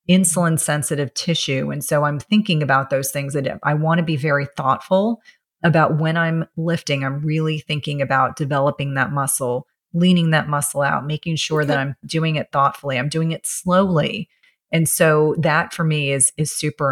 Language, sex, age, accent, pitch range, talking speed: English, female, 30-49, American, 140-170 Hz, 180 wpm